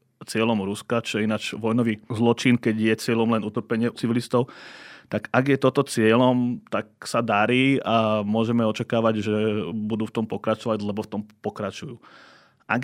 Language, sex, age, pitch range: Slovak, male, 30-49, 110-120 Hz